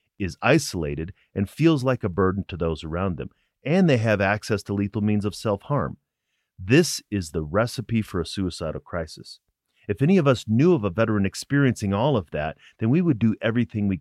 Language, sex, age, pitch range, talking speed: English, male, 30-49, 95-130 Hz, 195 wpm